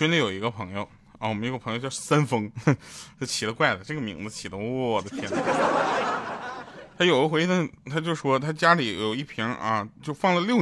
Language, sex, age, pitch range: Chinese, male, 20-39, 110-165 Hz